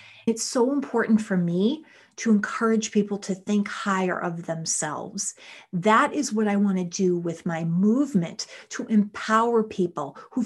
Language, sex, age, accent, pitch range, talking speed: English, female, 40-59, American, 185-230 Hz, 155 wpm